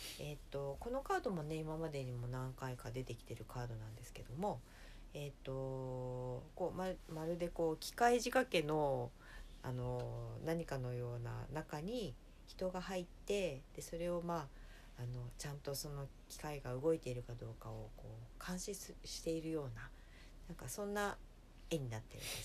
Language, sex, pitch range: Japanese, female, 120-170 Hz